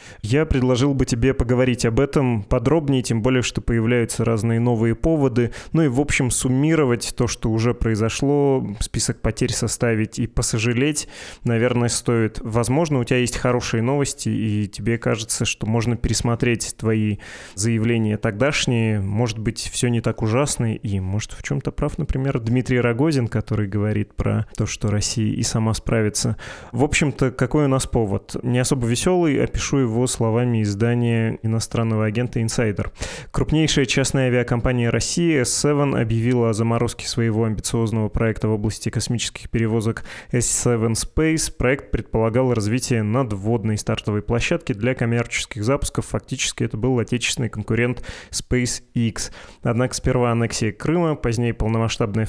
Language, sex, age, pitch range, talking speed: Russian, male, 20-39, 110-130 Hz, 140 wpm